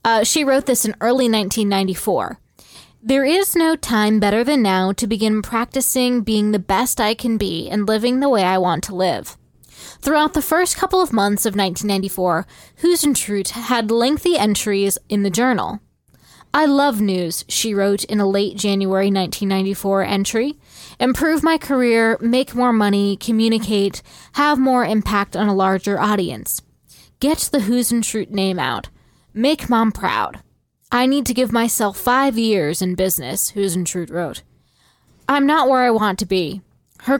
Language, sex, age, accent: English, female, 20-39, American